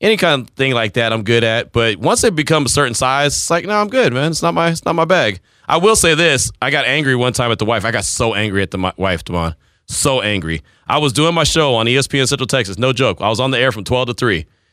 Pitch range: 105-150 Hz